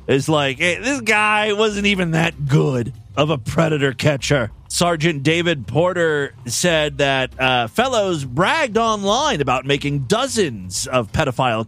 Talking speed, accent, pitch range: 135 wpm, American, 125-185 Hz